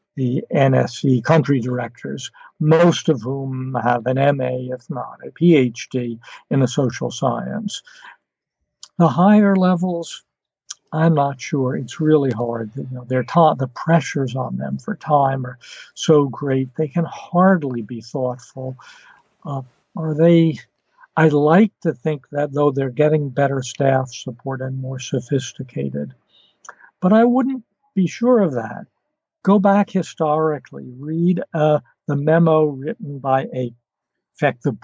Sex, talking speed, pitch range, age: male, 140 wpm, 130-165 Hz, 60-79